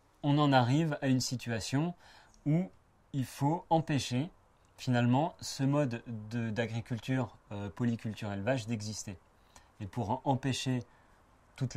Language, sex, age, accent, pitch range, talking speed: French, male, 30-49, French, 110-130 Hz, 105 wpm